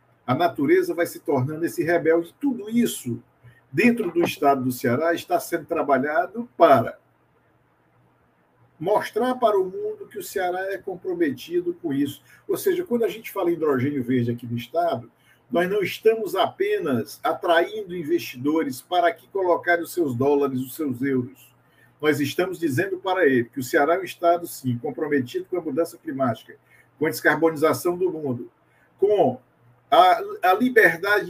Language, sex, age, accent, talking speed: Portuguese, male, 50-69, Brazilian, 155 wpm